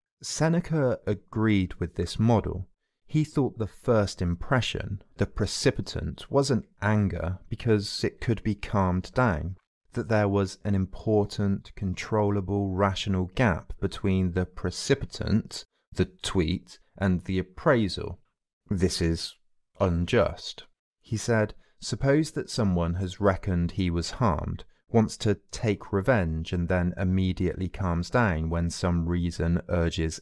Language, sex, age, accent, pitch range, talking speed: English, male, 30-49, British, 90-110 Hz, 125 wpm